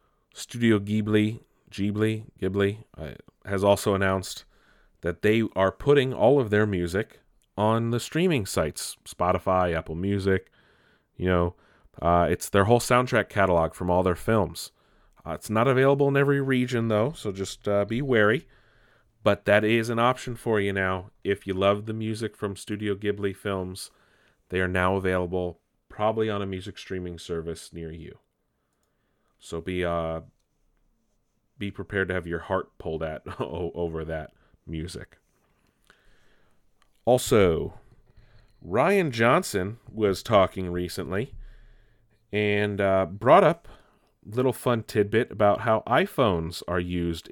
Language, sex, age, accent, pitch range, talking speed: English, male, 30-49, American, 90-115 Hz, 140 wpm